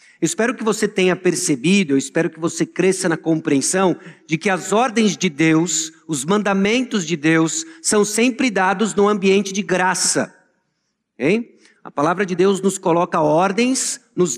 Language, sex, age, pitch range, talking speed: Portuguese, male, 50-69, 175-210 Hz, 160 wpm